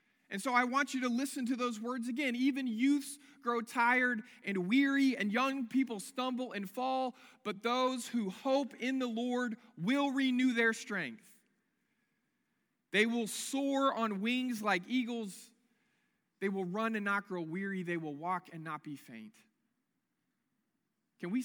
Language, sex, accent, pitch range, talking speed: English, male, American, 195-250 Hz, 160 wpm